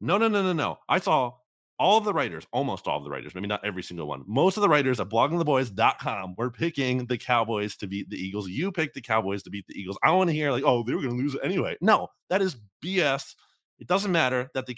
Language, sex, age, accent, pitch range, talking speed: English, male, 30-49, American, 105-145 Hz, 260 wpm